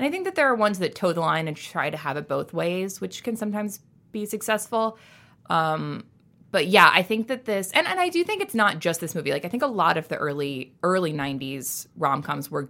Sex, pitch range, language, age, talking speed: female, 155-220 Hz, English, 20-39, 250 wpm